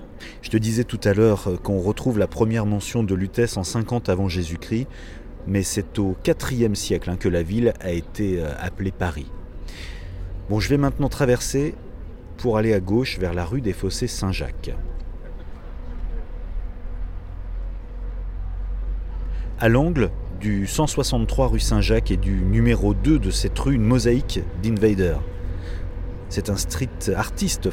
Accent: French